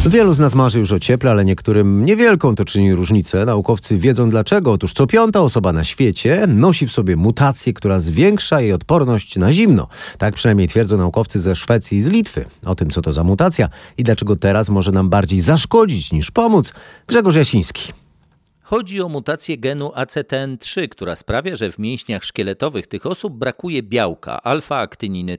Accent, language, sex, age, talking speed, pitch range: native, Polish, male, 40-59, 175 wpm, 95-135 Hz